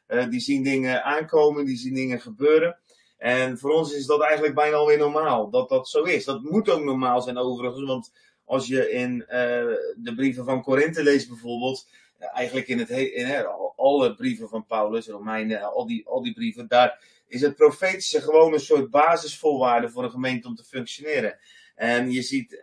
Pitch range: 125-150 Hz